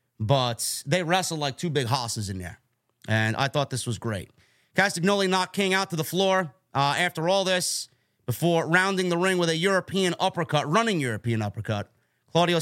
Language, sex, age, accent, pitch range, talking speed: English, male, 30-49, American, 135-175 Hz, 180 wpm